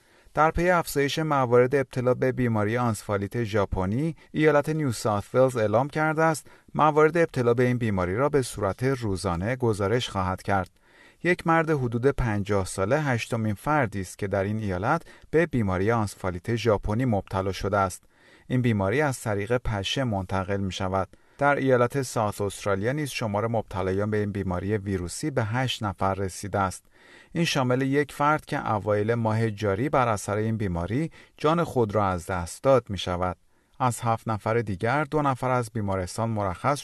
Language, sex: Persian, male